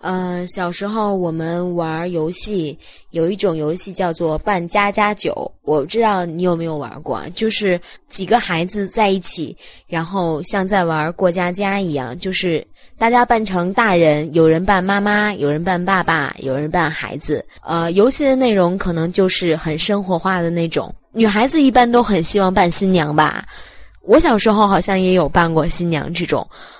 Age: 20-39